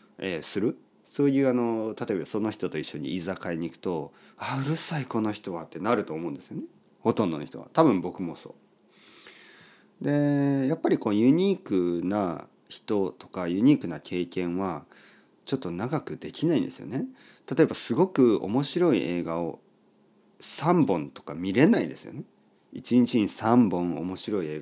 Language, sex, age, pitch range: Japanese, male, 40-59, 85-135 Hz